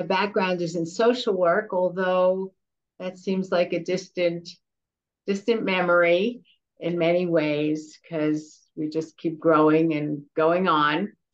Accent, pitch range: American, 155-190 Hz